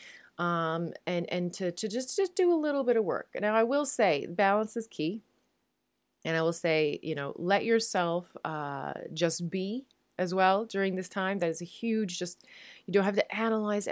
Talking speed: 200 wpm